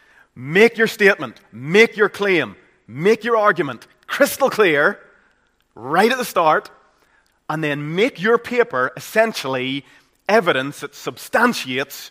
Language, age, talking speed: English, 30-49, 120 wpm